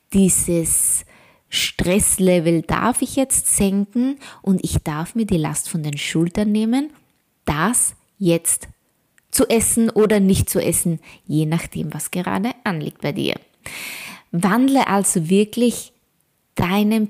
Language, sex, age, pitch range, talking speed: German, female, 20-39, 165-210 Hz, 125 wpm